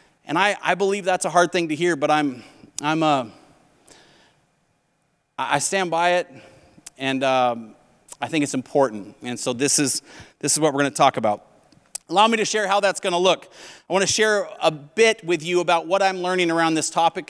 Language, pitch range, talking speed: English, 150-195 Hz, 210 wpm